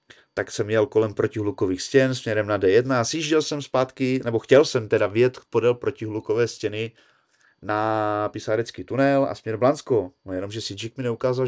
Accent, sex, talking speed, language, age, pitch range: native, male, 165 wpm, Czech, 30-49, 120-150 Hz